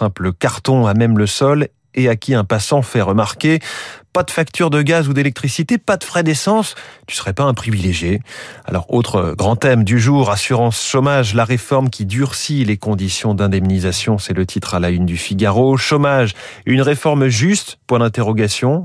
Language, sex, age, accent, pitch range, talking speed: French, male, 30-49, French, 100-135 Hz, 185 wpm